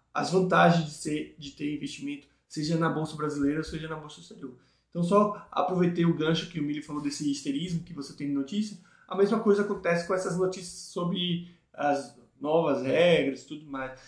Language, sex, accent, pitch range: Portuguese, male, Brazilian, 160-195 Hz